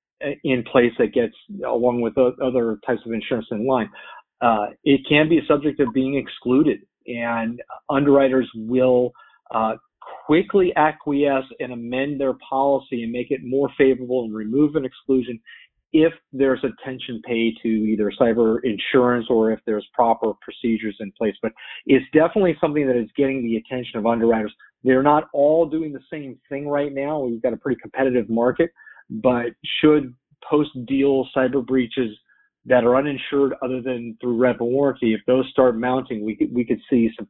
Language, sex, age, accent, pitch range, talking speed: English, male, 40-59, American, 115-145 Hz, 170 wpm